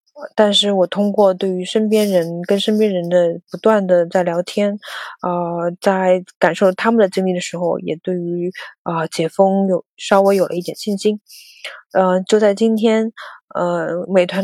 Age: 20-39